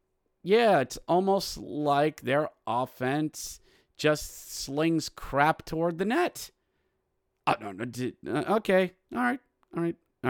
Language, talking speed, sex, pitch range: English, 105 wpm, male, 125-160 Hz